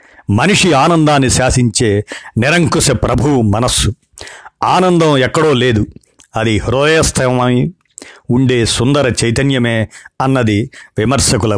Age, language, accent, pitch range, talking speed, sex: 50-69, Telugu, native, 115-140 Hz, 85 wpm, male